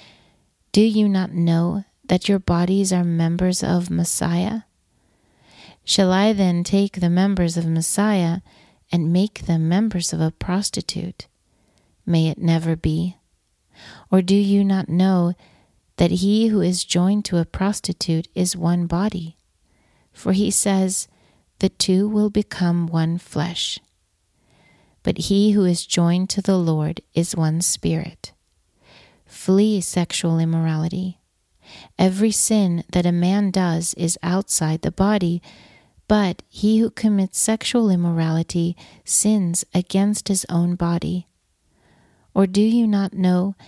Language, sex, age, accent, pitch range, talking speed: English, female, 40-59, American, 170-195 Hz, 130 wpm